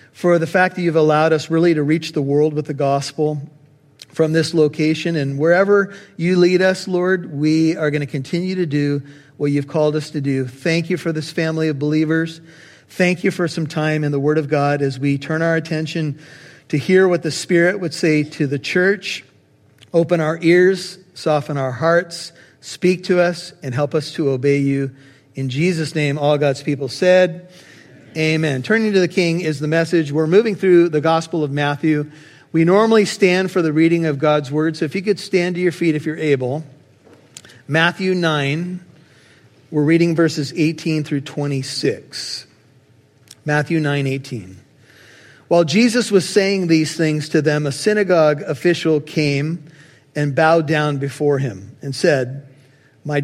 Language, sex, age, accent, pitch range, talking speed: English, male, 40-59, American, 145-170 Hz, 175 wpm